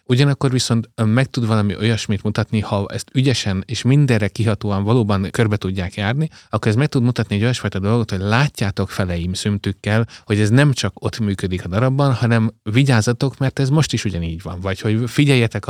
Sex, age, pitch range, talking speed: male, 30-49, 95-125 Hz, 185 wpm